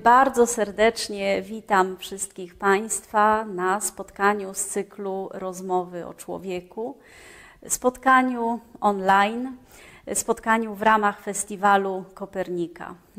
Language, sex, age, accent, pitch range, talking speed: Polish, female, 30-49, native, 190-225 Hz, 85 wpm